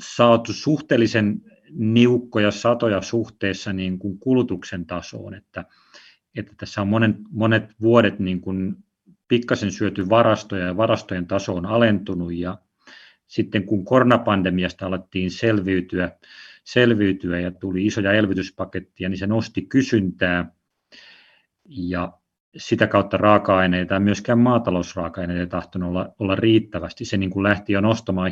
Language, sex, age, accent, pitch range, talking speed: Finnish, male, 30-49, native, 90-110 Hz, 120 wpm